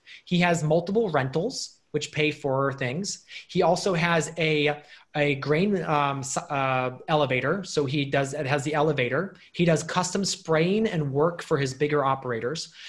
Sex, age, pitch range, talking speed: male, 30-49, 145-180 Hz, 160 wpm